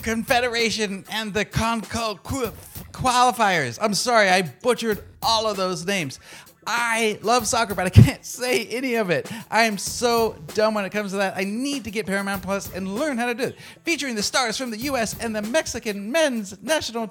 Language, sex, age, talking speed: English, male, 30-49, 195 wpm